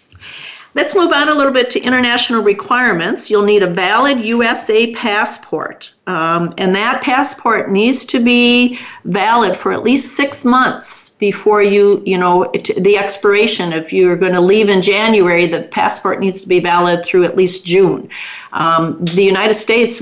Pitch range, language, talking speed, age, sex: 180-235 Hz, English, 170 wpm, 50-69, female